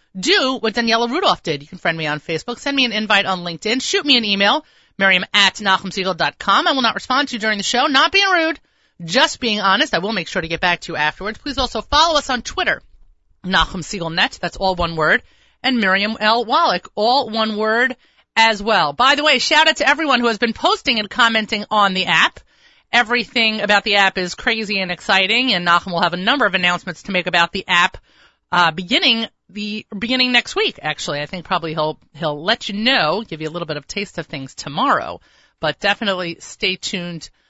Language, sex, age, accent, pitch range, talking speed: English, female, 30-49, American, 180-245 Hz, 215 wpm